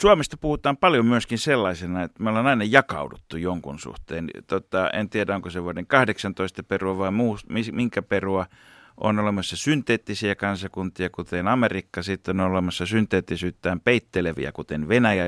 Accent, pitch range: native, 90-115 Hz